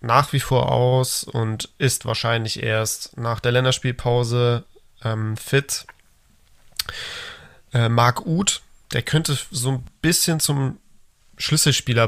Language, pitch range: German, 110-125 Hz